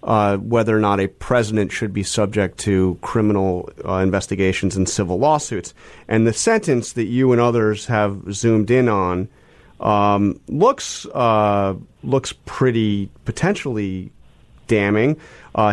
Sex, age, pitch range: male, 30-49, 100-120 Hz